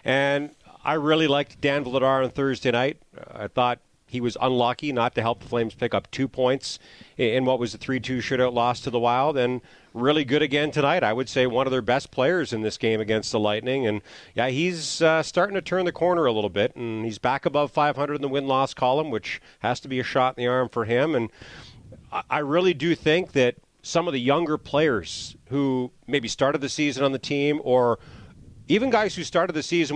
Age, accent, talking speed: 40-59, American, 220 wpm